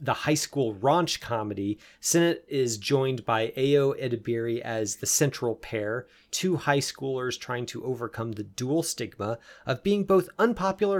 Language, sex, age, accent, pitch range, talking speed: English, male, 30-49, American, 115-160 Hz, 155 wpm